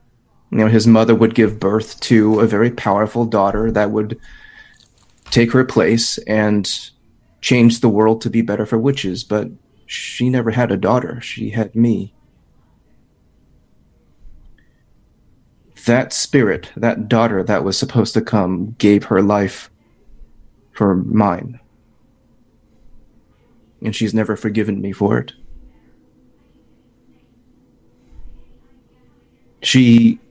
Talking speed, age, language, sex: 110 wpm, 30-49, English, male